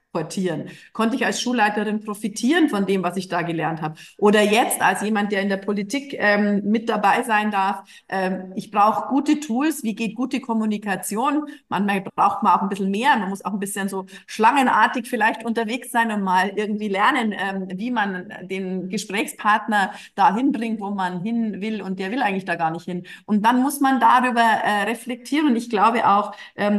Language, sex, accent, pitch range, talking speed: German, female, German, 190-225 Hz, 195 wpm